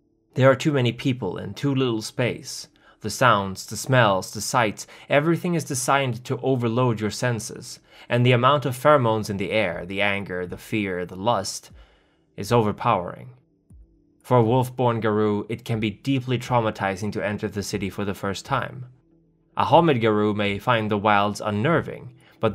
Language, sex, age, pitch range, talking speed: English, male, 20-39, 105-130 Hz, 170 wpm